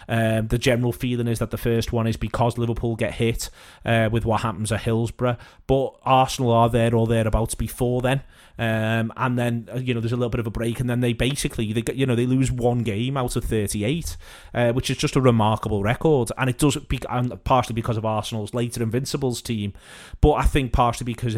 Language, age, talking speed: English, 30-49, 225 wpm